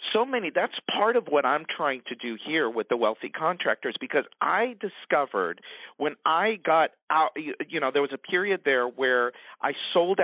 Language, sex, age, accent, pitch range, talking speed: English, male, 50-69, American, 140-205 Hz, 190 wpm